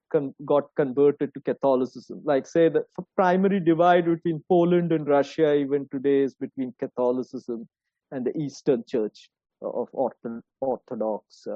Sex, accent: male, Indian